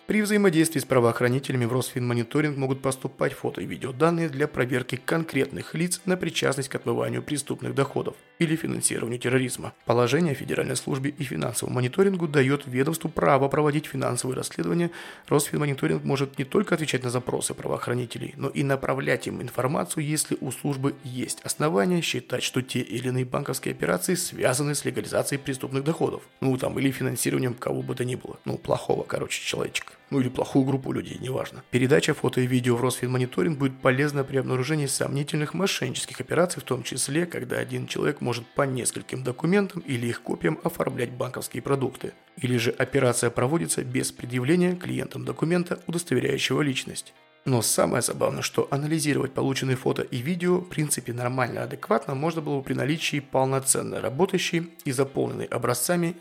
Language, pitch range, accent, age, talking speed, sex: Russian, 125-155 Hz, native, 30-49, 160 wpm, male